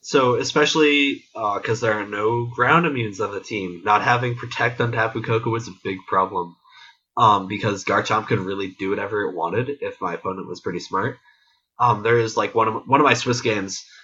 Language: English